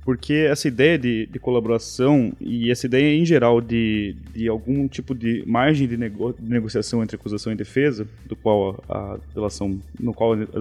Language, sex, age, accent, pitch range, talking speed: Portuguese, male, 20-39, Brazilian, 115-145 Hz, 170 wpm